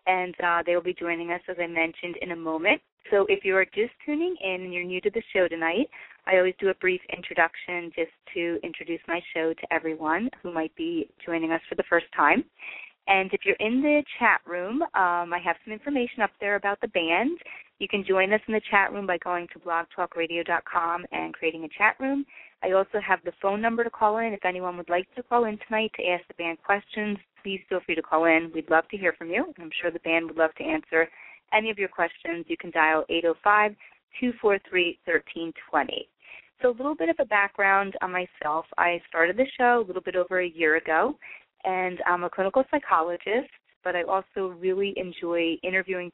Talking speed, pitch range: 215 wpm, 170-205 Hz